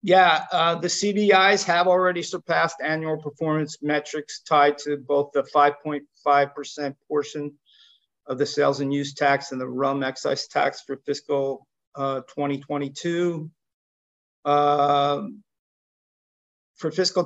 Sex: male